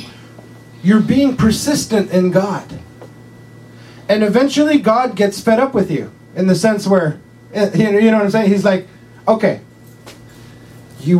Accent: American